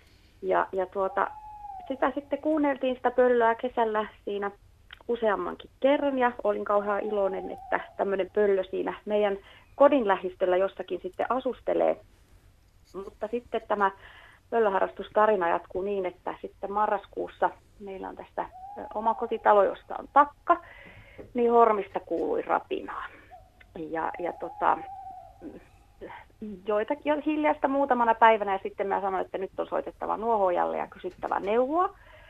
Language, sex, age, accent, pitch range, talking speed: Finnish, female, 30-49, native, 185-245 Hz, 125 wpm